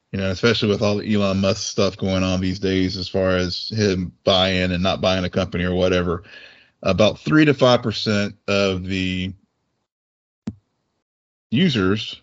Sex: male